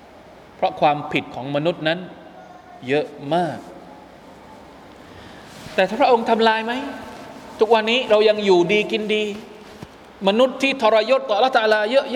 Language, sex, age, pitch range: Thai, male, 20-39, 175-240 Hz